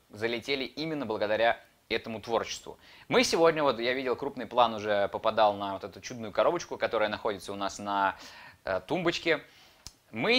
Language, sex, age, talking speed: Russian, male, 20-39, 155 wpm